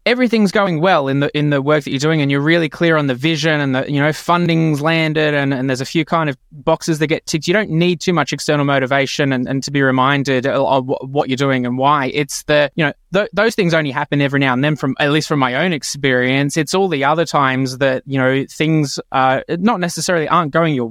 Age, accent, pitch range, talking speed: 20-39, Australian, 135-160 Hz, 255 wpm